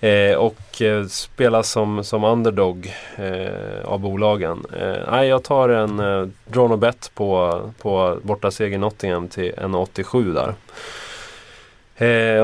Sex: male